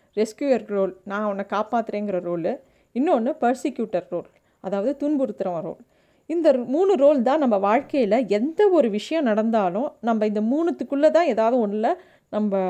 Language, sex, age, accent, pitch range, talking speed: Tamil, female, 30-49, native, 210-275 Hz, 135 wpm